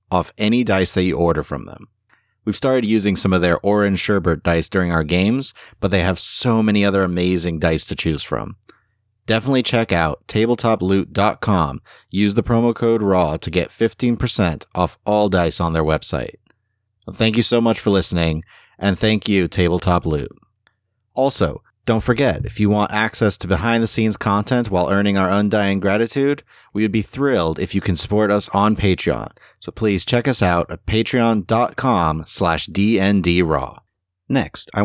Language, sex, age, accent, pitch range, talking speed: English, male, 30-49, American, 85-110 Hz, 165 wpm